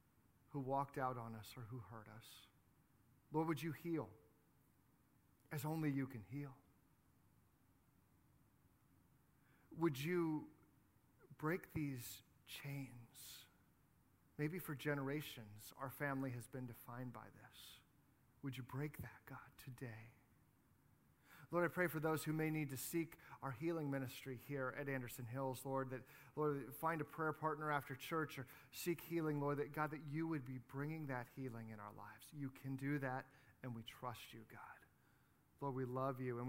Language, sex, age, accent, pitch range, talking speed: English, male, 40-59, American, 130-160 Hz, 155 wpm